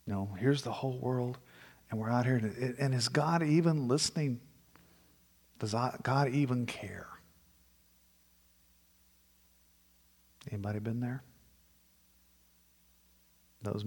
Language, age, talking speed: English, 50-69, 105 wpm